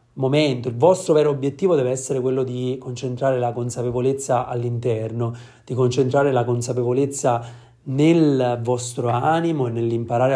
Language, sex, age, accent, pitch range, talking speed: Italian, male, 30-49, native, 120-145 Hz, 125 wpm